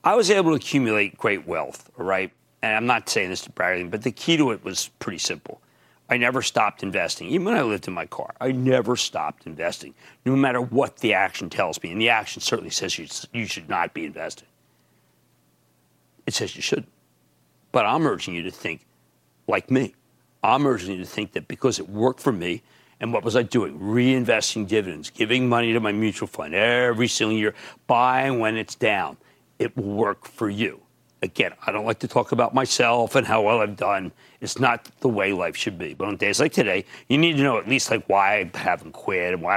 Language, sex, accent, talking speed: English, male, American, 215 wpm